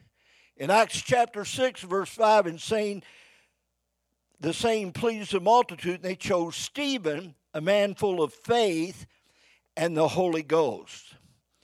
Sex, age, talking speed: male, 60-79, 135 wpm